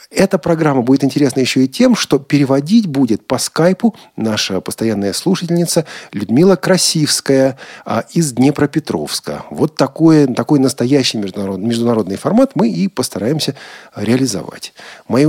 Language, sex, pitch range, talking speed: Russian, male, 105-145 Hz, 120 wpm